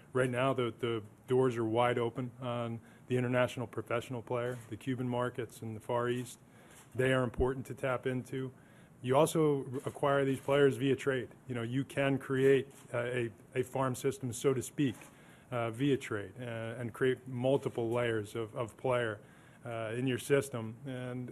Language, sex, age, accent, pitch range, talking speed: English, male, 20-39, American, 115-130 Hz, 170 wpm